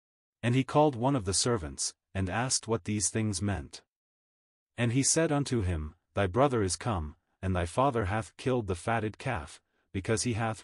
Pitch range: 90-120 Hz